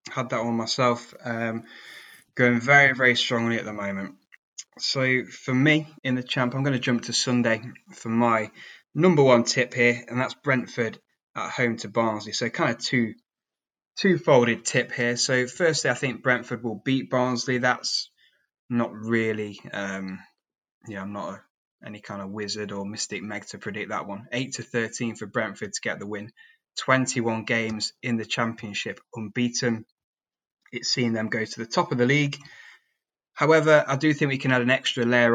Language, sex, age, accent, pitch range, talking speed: English, male, 20-39, British, 115-130 Hz, 185 wpm